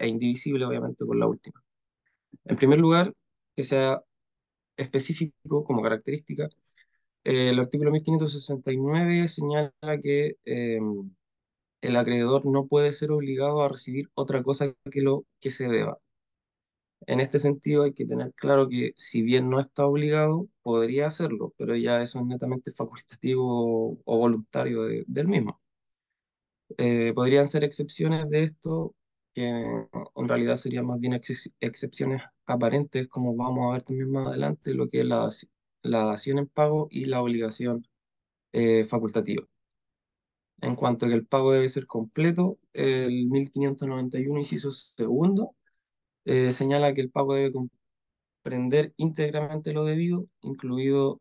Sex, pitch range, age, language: male, 120-145 Hz, 20-39, Spanish